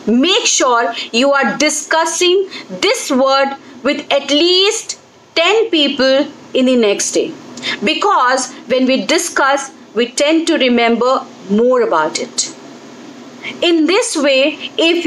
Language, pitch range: English, 255-325 Hz